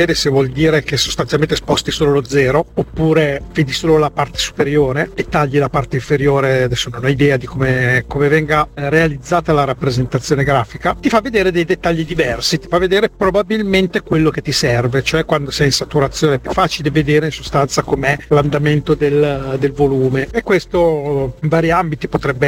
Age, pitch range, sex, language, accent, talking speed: 40-59, 140-170 Hz, male, Italian, native, 180 wpm